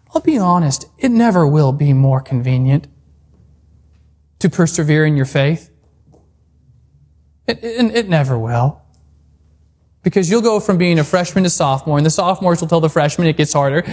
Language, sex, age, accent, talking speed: English, male, 20-39, American, 160 wpm